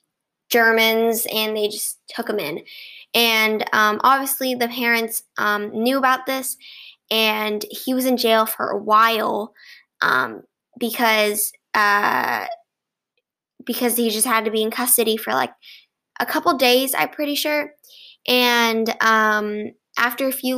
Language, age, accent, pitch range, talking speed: English, 10-29, American, 215-250 Hz, 140 wpm